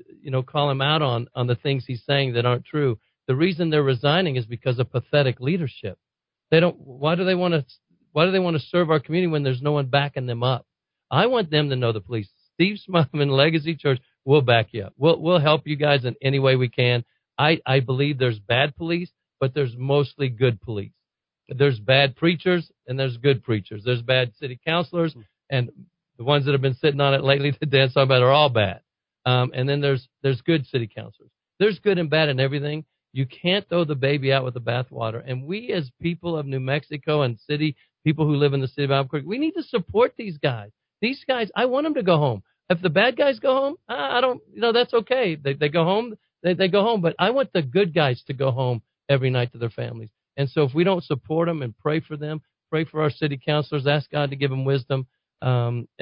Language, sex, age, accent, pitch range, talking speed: English, male, 50-69, American, 130-170 Hz, 235 wpm